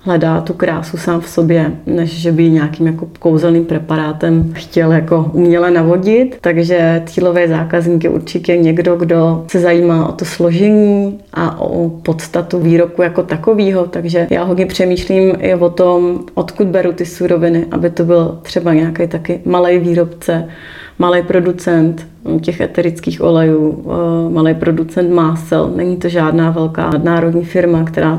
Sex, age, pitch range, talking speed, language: female, 30-49, 165-175 Hz, 145 wpm, Czech